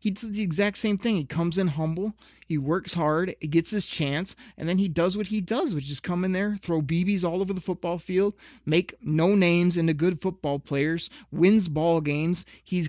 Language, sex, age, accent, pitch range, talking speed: English, male, 30-49, American, 140-185 Hz, 220 wpm